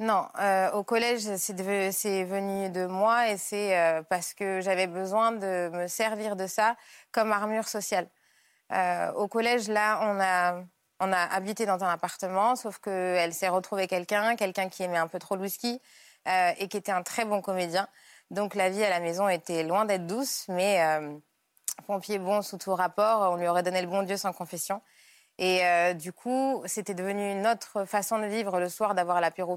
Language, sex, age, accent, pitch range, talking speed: French, female, 20-39, French, 180-210 Hz, 200 wpm